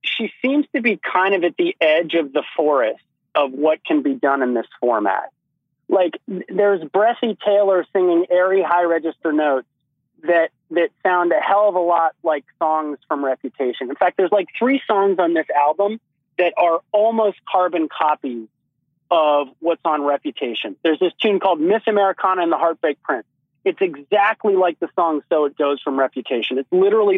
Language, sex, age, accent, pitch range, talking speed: English, male, 30-49, American, 155-205 Hz, 180 wpm